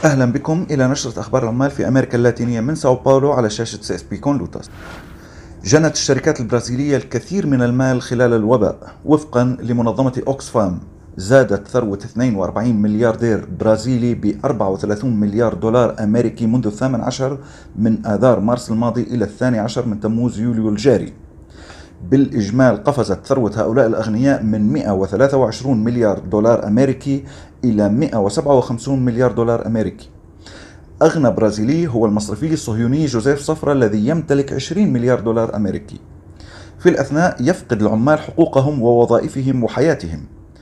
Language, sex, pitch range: Arabic, male, 110-135 Hz